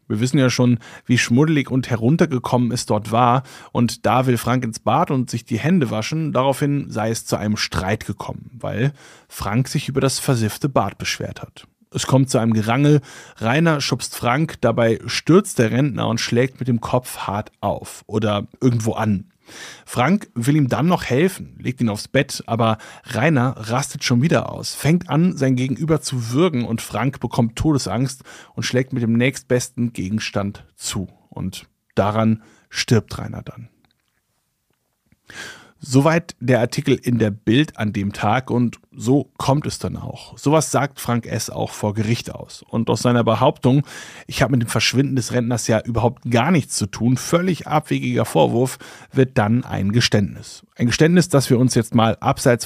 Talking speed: 175 wpm